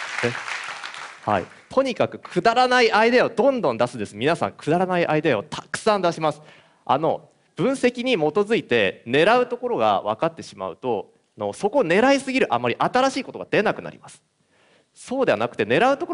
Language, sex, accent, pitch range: Chinese, male, Japanese, 150-255 Hz